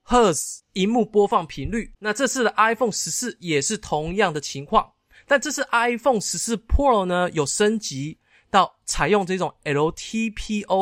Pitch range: 155-215 Hz